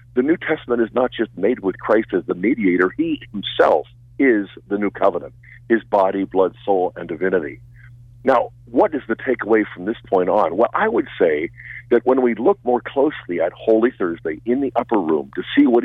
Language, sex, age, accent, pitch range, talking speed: English, male, 50-69, American, 100-120 Hz, 200 wpm